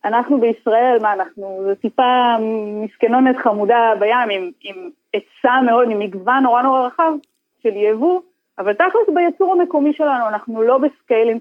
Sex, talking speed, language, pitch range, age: female, 145 wpm, Hebrew, 210-280 Hz, 20-39